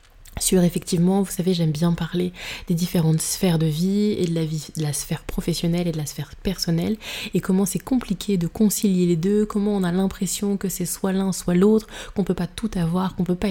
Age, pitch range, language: 20-39, 165-195 Hz, French